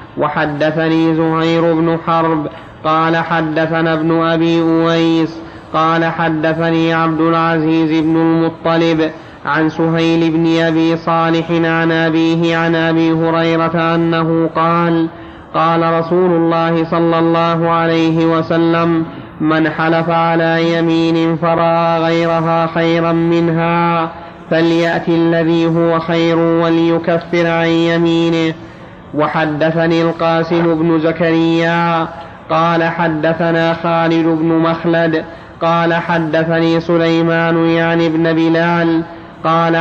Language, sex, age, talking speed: Arabic, male, 30-49, 100 wpm